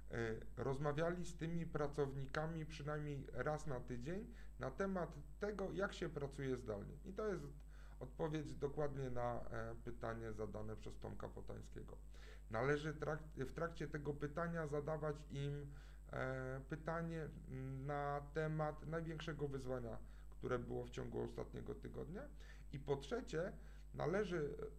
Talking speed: 115 wpm